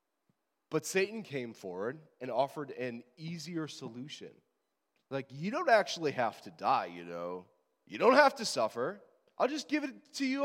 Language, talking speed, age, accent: English, 165 wpm, 30-49, American